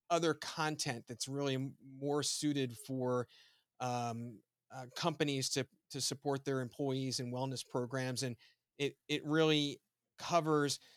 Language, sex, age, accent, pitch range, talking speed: English, male, 30-49, American, 125-155 Hz, 125 wpm